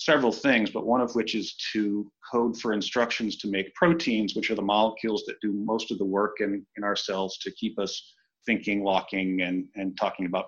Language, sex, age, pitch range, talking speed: English, male, 40-59, 100-120 Hz, 210 wpm